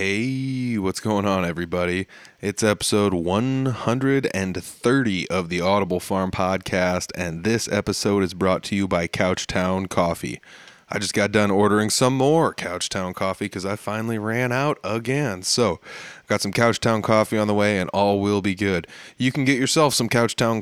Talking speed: 170 wpm